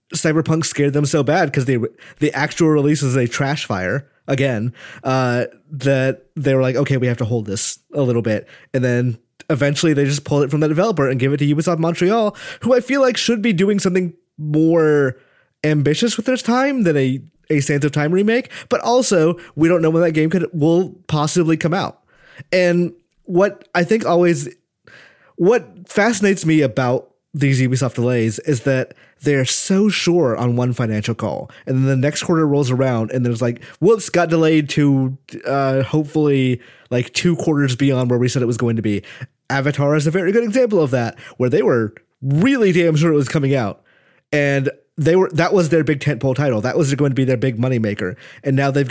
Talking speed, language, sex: 200 wpm, English, male